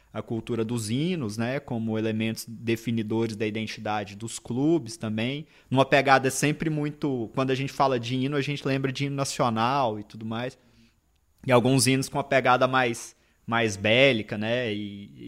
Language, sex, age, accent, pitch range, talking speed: Portuguese, male, 20-39, Brazilian, 115-160 Hz, 170 wpm